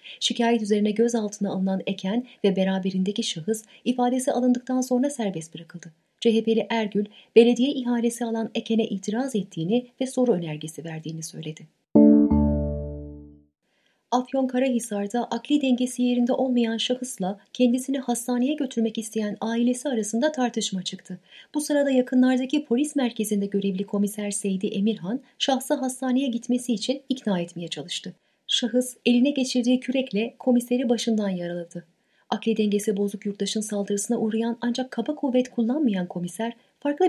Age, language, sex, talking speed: 30-49, Turkish, female, 125 wpm